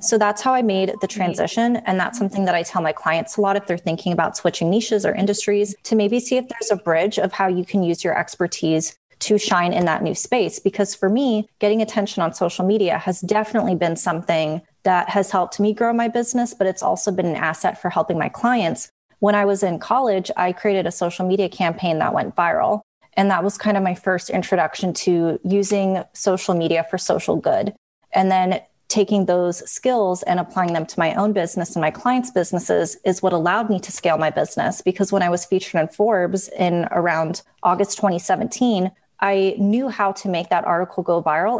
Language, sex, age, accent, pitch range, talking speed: English, female, 20-39, American, 170-205 Hz, 210 wpm